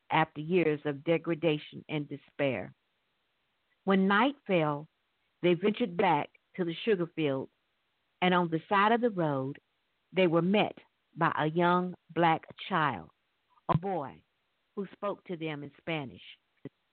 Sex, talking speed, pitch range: female, 140 wpm, 160-200 Hz